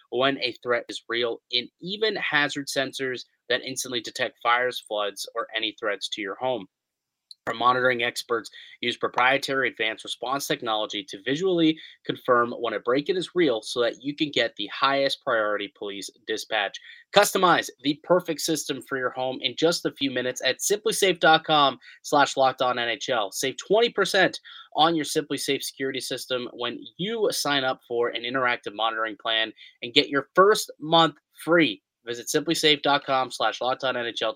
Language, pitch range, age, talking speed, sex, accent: English, 125-165 Hz, 20-39, 155 wpm, male, American